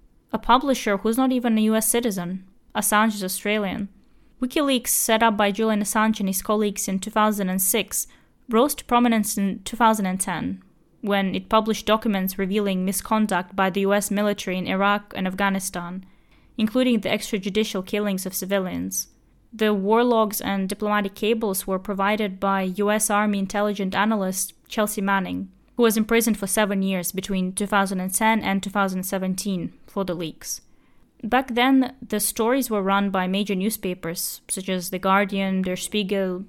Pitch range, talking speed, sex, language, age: 190-220 Hz, 145 wpm, female, English, 20-39